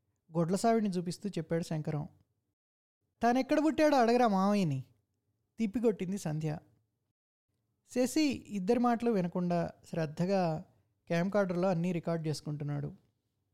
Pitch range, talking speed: 145-205 Hz, 95 wpm